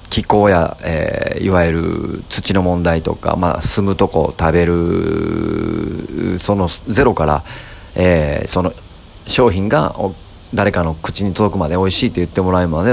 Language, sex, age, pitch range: Japanese, male, 40-59, 85-105 Hz